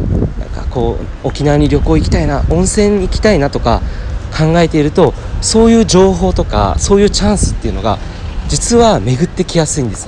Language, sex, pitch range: Japanese, male, 110-185 Hz